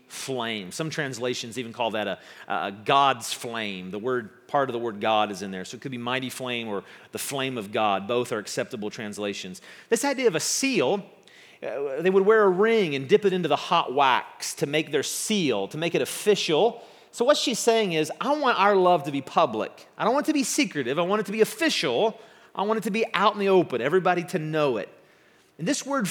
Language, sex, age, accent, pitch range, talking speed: English, male, 40-59, American, 140-220 Hz, 230 wpm